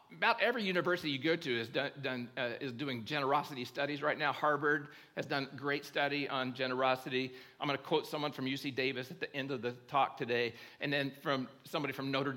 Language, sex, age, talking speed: English, male, 50-69, 215 wpm